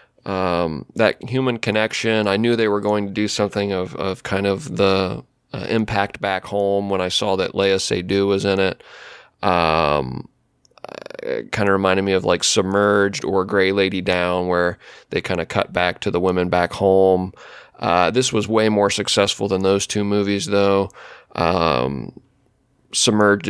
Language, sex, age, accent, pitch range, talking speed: English, male, 20-39, American, 90-105 Hz, 170 wpm